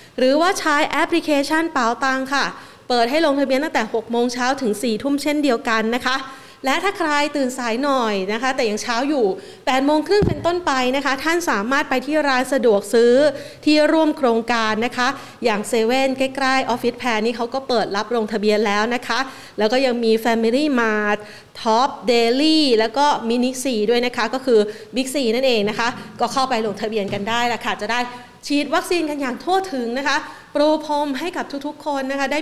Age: 30-49